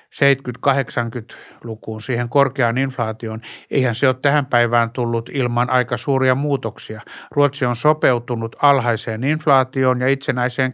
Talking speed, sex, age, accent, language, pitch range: 115 wpm, male, 60-79, native, Finnish, 120-135 Hz